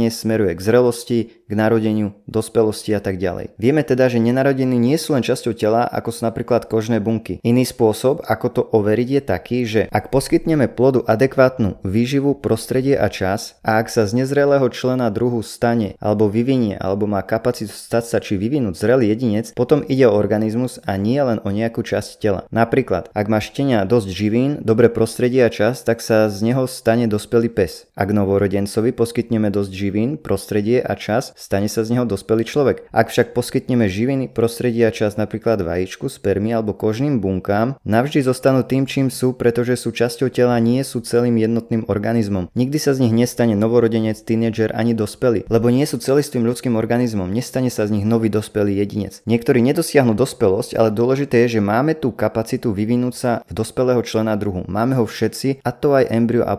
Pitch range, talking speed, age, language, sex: 110-125 Hz, 185 wpm, 20-39, Slovak, male